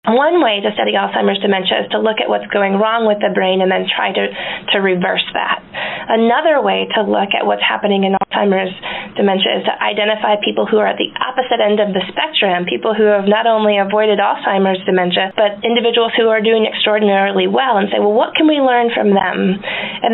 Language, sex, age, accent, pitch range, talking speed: English, female, 30-49, American, 190-230 Hz, 210 wpm